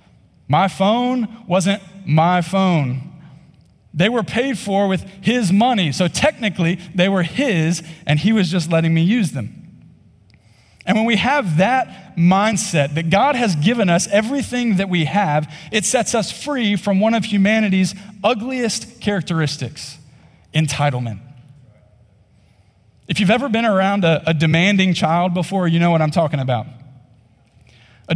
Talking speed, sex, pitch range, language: 145 wpm, male, 150-210 Hz, English